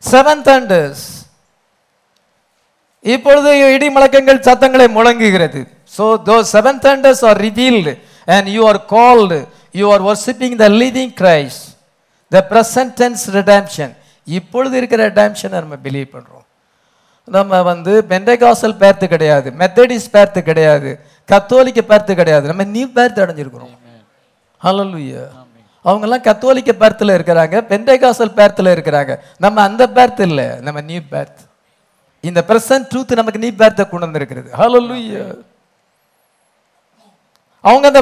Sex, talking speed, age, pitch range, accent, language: male, 70 wpm, 50-69, 185-255 Hz, Indian, English